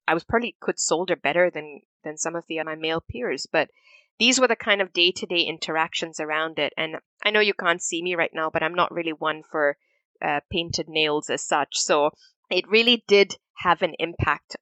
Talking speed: 220 wpm